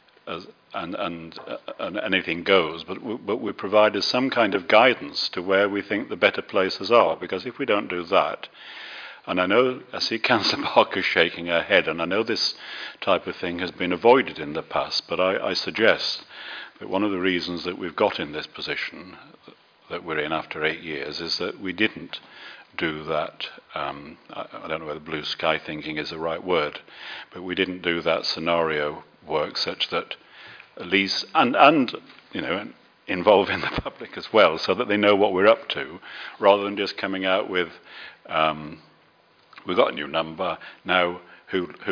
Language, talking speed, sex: English, 195 wpm, male